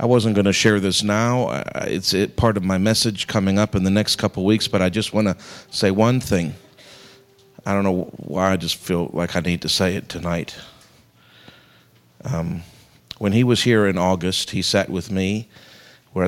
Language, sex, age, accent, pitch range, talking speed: English, male, 50-69, American, 90-105 Hz, 195 wpm